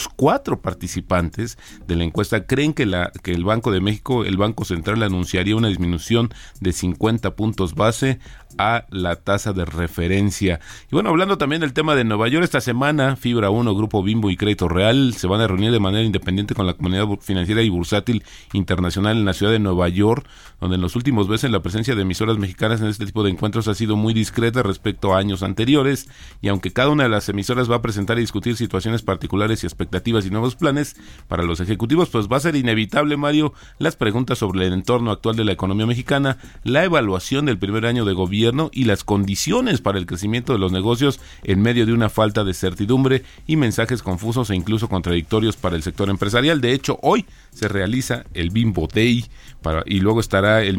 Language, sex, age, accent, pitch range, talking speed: Spanish, male, 40-59, Mexican, 95-120 Hz, 205 wpm